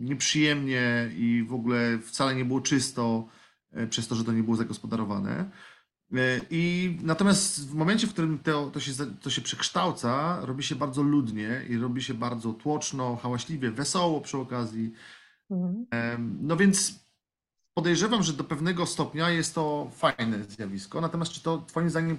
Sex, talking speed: male, 145 wpm